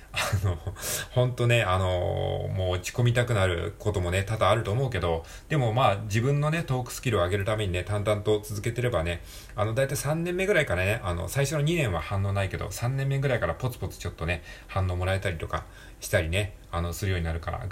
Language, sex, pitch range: Japanese, male, 90-125 Hz